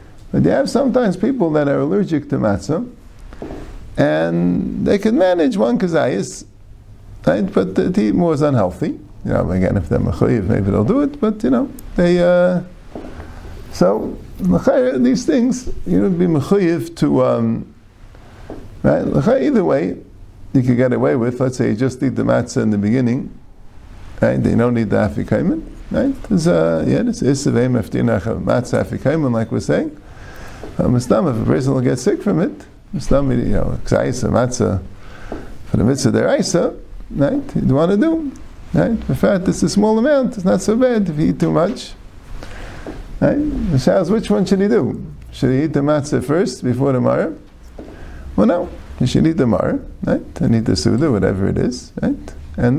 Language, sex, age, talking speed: English, male, 50-69, 180 wpm